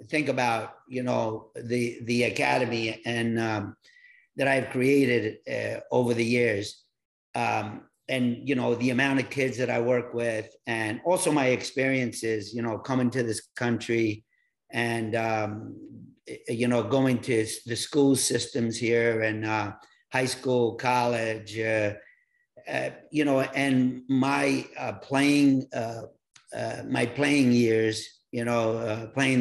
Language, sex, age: English, male, 50-69